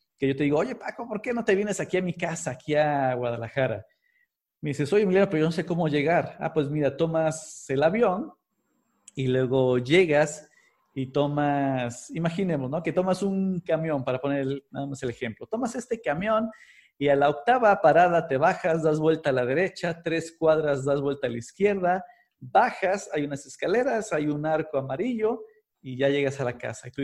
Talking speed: 200 wpm